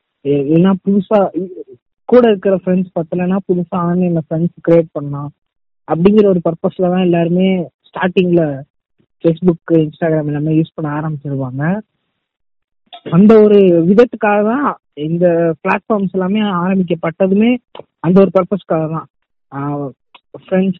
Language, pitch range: Tamil, 165-200 Hz